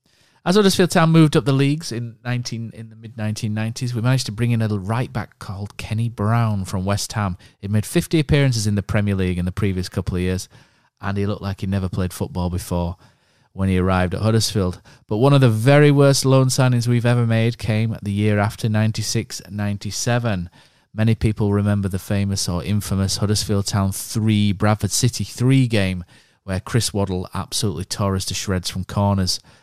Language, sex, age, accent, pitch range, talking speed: English, male, 30-49, British, 95-120 Hz, 190 wpm